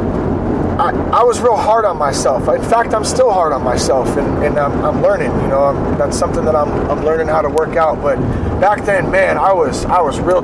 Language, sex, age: English, male, 30-49